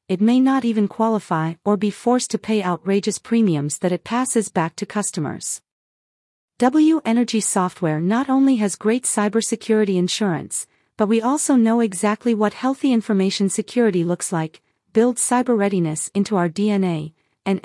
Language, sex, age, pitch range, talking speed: English, female, 40-59, 185-235 Hz, 155 wpm